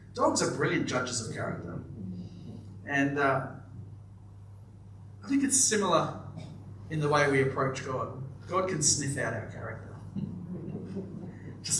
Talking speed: 125 wpm